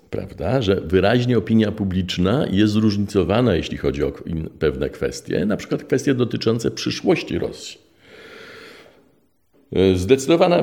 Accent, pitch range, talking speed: native, 80-110 Hz, 115 wpm